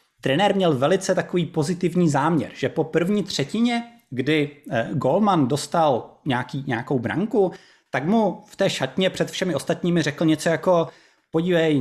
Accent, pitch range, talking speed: native, 145-190 Hz, 145 wpm